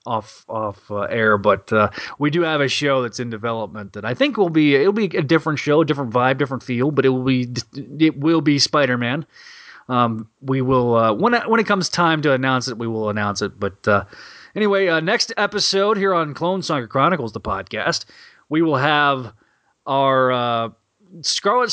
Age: 30-49